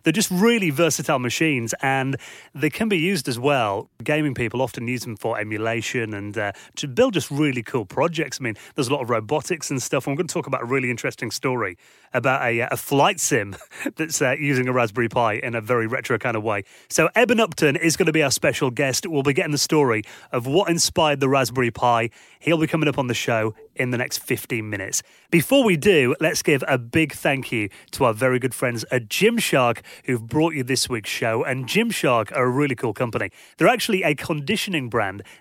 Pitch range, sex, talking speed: 120-165 Hz, male, 220 wpm